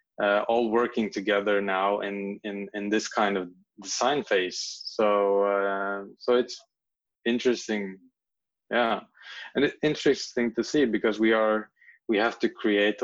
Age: 20-39